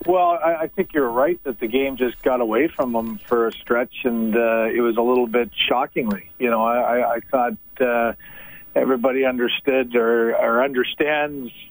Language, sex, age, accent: English, male, 50-69, American